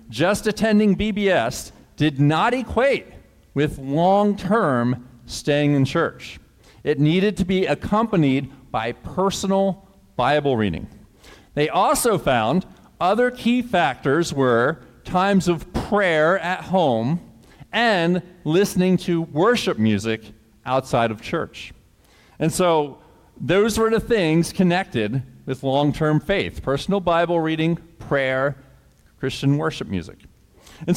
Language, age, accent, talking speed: English, 40-59, American, 110 wpm